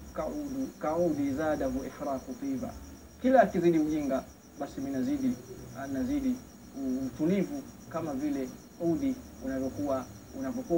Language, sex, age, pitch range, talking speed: Swahili, male, 30-49, 170-260 Hz, 95 wpm